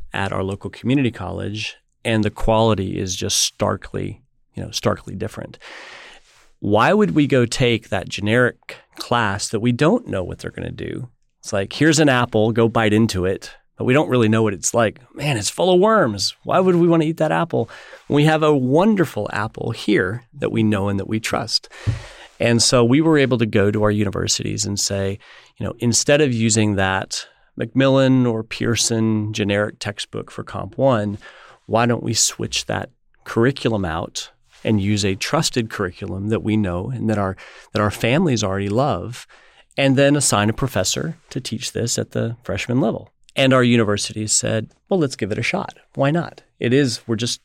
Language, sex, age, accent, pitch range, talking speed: English, male, 40-59, American, 105-130 Hz, 190 wpm